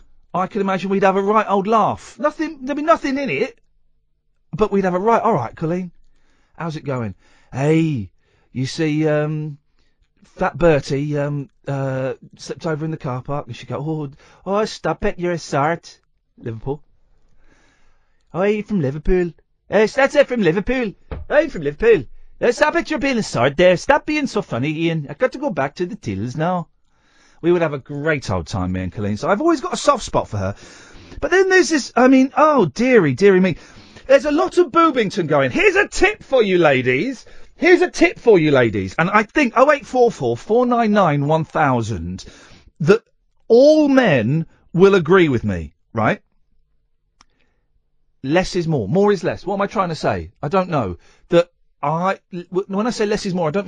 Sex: male